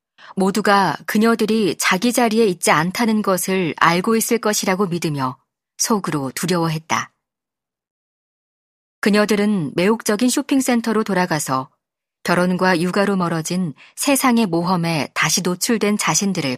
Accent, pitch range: native, 160-210 Hz